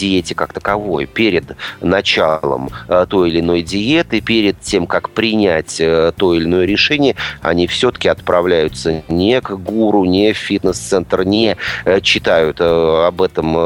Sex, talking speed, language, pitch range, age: male, 130 wpm, Russian, 85-105 Hz, 30-49